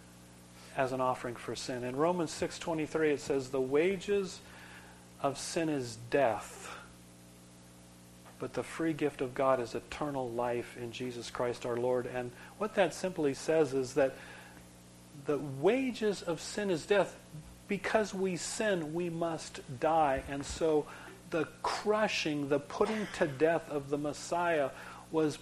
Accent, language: American, English